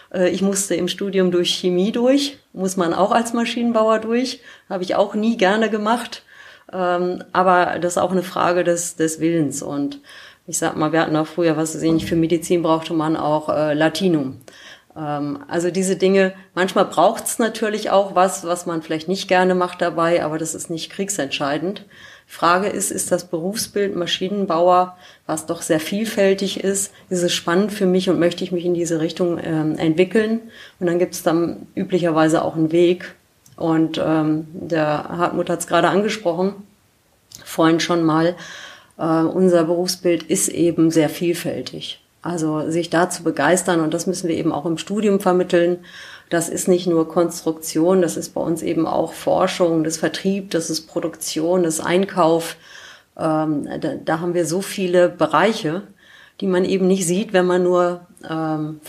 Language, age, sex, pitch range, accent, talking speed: German, 30-49, female, 160-185 Hz, German, 175 wpm